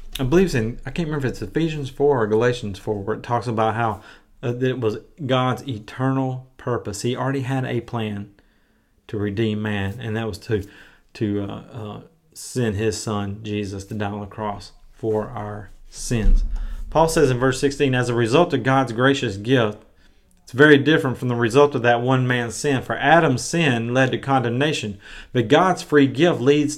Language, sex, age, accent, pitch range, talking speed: English, male, 40-59, American, 110-135 Hz, 190 wpm